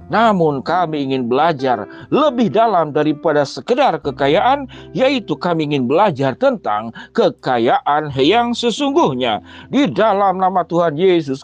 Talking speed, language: 115 wpm, Indonesian